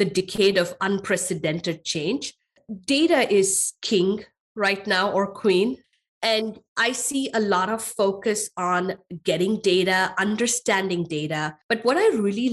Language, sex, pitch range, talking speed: English, female, 185-225 Hz, 135 wpm